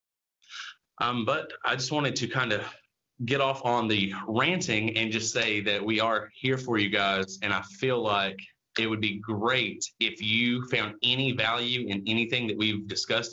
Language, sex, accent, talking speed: English, male, American, 185 wpm